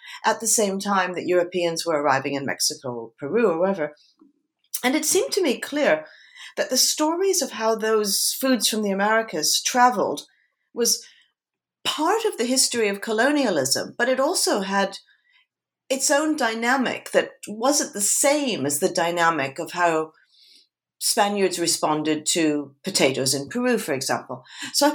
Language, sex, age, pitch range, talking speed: English, female, 50-69, 175-275 Hz, 150 wpm